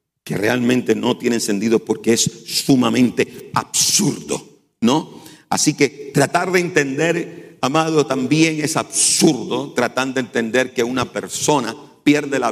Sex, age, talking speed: male, 50-69, 130 wpm